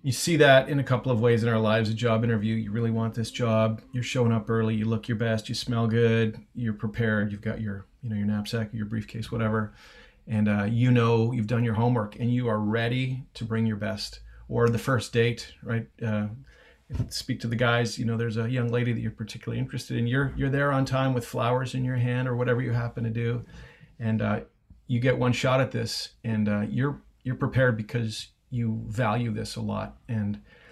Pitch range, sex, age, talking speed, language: 110-125 Hz, male, 40-59, 225 wpm, English